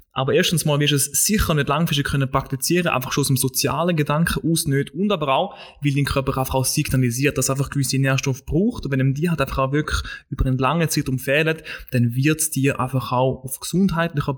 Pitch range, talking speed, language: 135-160 Hz, 240 wpm, German